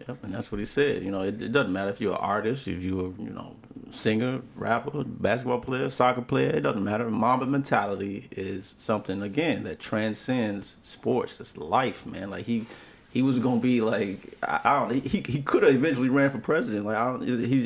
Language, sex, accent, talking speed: English, male, American, 210 wpm